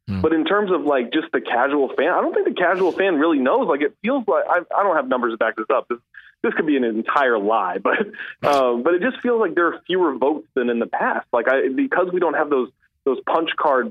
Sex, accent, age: male, American, 20-39